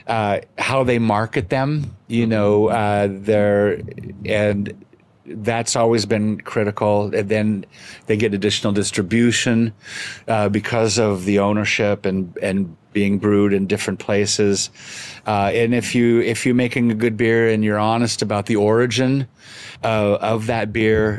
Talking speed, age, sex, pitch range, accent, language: 145 wpm, 50-69, male, 100-115 Hz, American, Polish